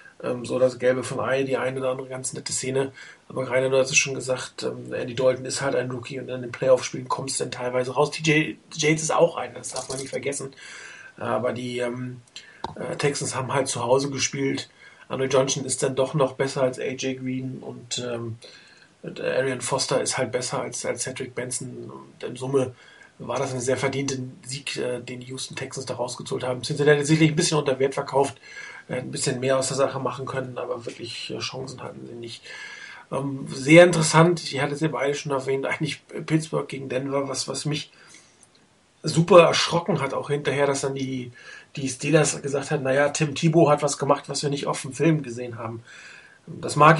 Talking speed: 205 wpm